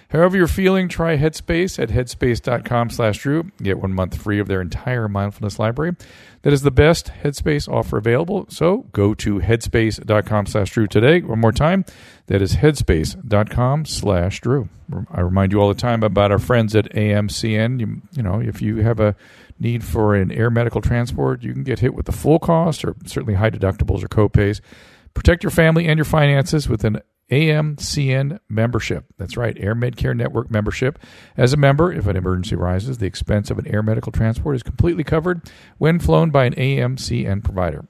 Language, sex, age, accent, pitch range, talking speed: English, male, 50-69, American, 100-140 Hz, 175 wpm